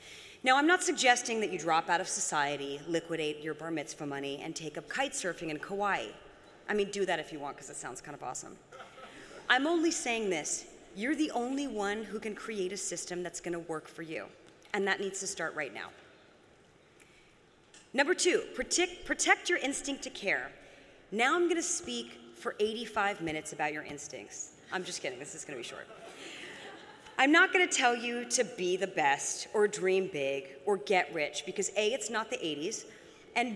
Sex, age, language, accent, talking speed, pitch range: female, 30-49, English, American, 200 wpm, 170-250 Hz